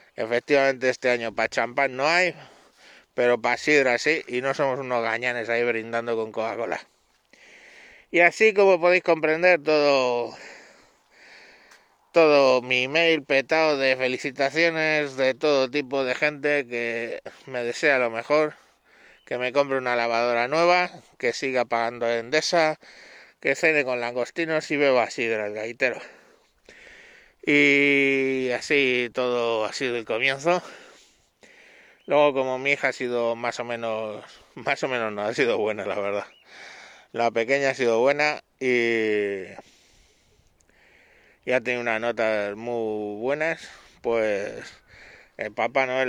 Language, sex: Spanish, male